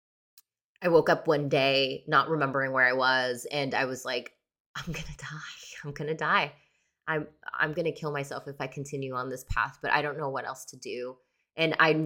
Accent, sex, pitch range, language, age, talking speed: American, female, 150-185 Hz, English, 20-39, 220 wpm